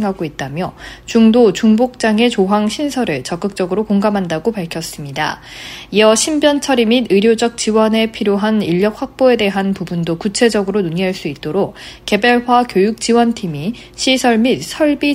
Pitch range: 185-240 Hz